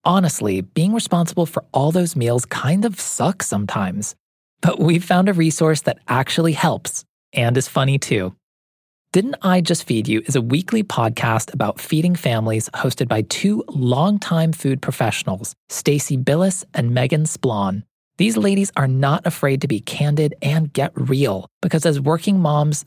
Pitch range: 125-170 Hz